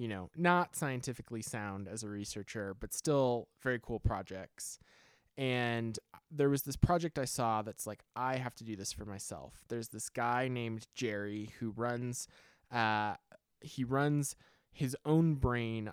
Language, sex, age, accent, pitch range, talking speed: English, male, 20-39, American, 105-130 Hz, 160 wpm